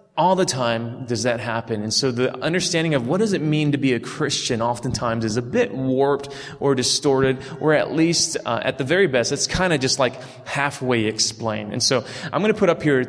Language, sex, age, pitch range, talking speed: English, male, 30-49, 115-145 Hz, 225 wpm